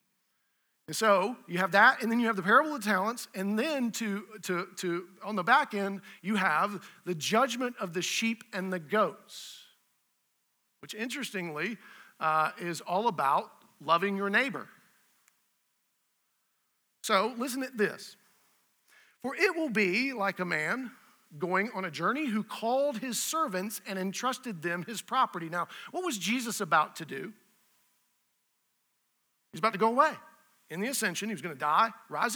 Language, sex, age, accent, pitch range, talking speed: English, male, 40-59, American, 190-245 Hz, 160 wpm